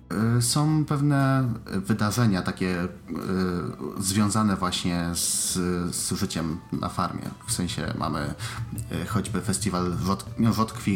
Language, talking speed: Polish, 95 wpm